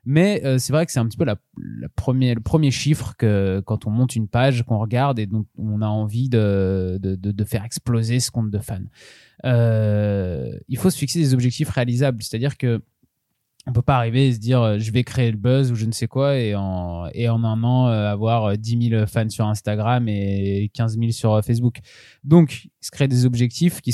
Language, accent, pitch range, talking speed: French, French, 110-135 Hz, 225 wpm